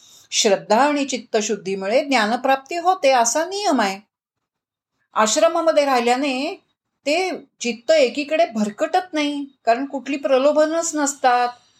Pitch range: 220-290 Hz